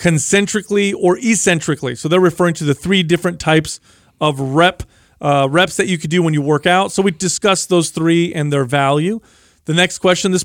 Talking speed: 200 wpm